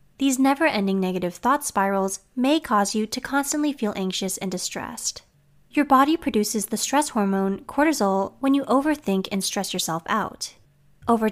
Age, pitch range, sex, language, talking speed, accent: 20-39, 195-275 Hz, female, English, 155 wpm, American